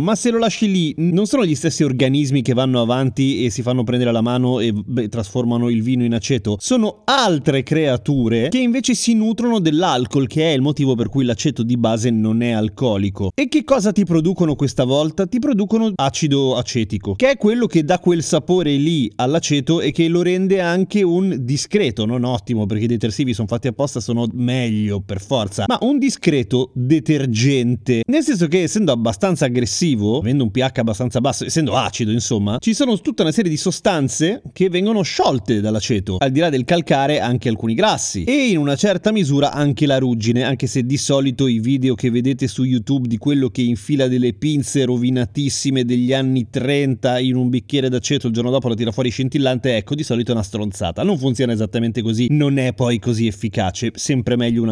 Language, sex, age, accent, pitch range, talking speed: Italian, male, 30-49, native, 120-160 Hz, 195 wpm